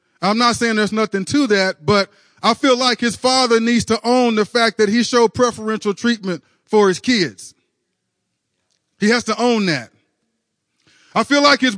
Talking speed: 180 wpm